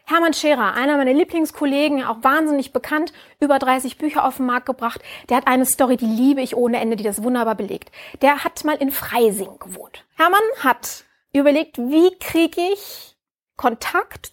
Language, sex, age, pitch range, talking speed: German, female, 30-49, 230-300 Hz, 170 wpm